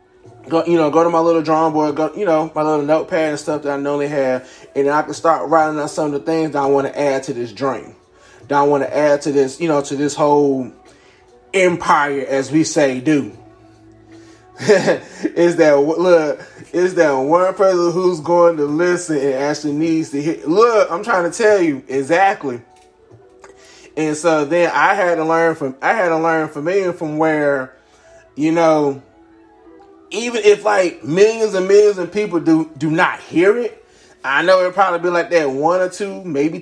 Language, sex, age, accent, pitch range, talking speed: English, male, 20-39, American, 145-185 Hz, 195 wpm